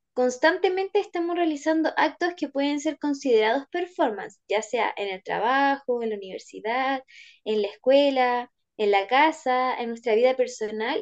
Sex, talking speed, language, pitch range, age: female, 145 wpm, Spanish, 250-320 Hz, 10-29